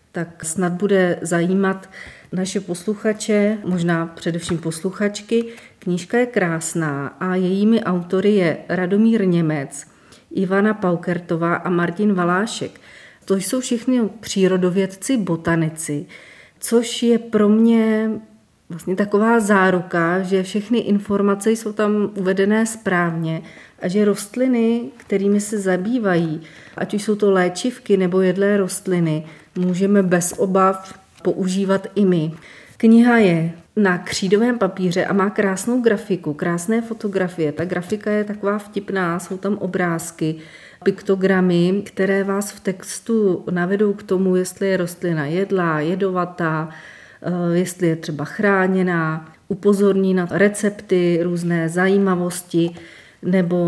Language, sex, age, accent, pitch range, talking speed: Czech, female, 40-59, native, 175-205 Hz, 115 wpm